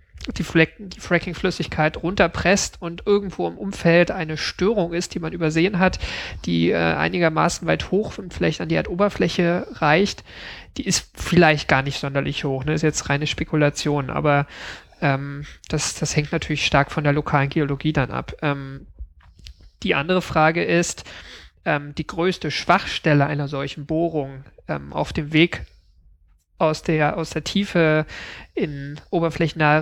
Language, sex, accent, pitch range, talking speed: German, male, German, 145-170 Hz, 155 wpm